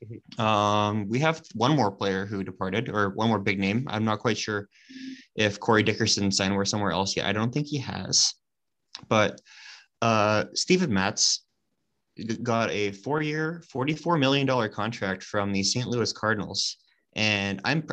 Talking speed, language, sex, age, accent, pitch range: 155 wpm, English, male, 20-39, American, 100-120 Hz